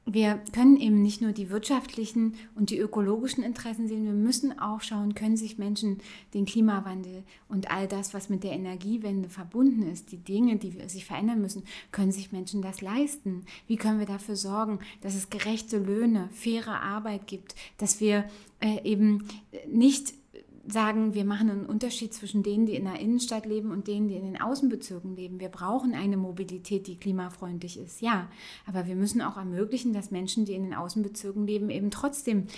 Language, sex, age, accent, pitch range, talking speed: German, female, 30-49, German, 195-230 Hz, 180 wpm